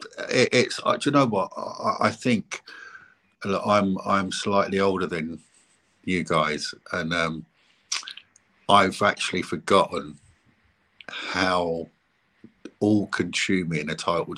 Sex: male